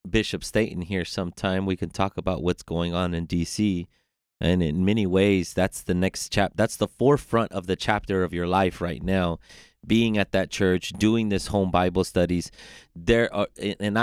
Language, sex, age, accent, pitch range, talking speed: English, male, 30-49, American, 85-100 Hz, 190 wpm